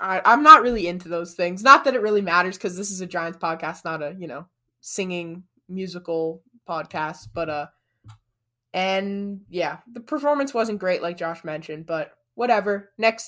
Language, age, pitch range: English, 20-39, 165-215 Hz